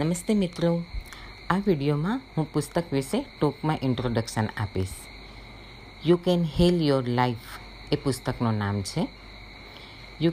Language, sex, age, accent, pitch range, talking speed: Gujarati, female, 50-69, native, 115-170 Hz, 115 wpm